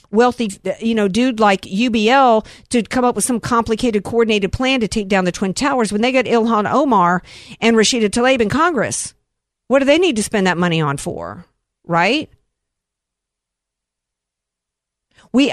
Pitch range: 170-225 Hz